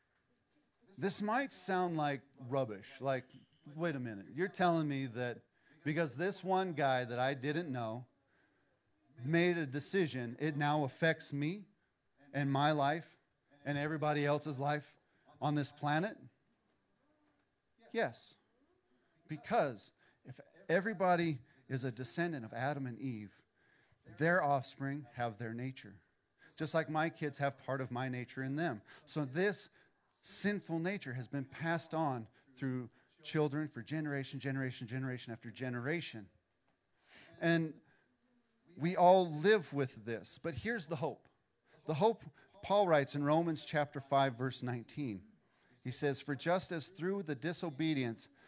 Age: 40-59